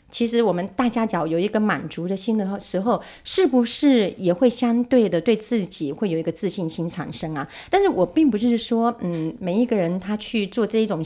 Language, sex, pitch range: Chinese, female, 175-240 Hz